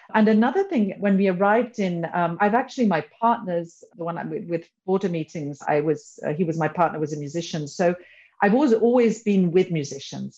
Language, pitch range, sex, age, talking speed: English, 155-190 Hz, female, 50-69, 195 wpm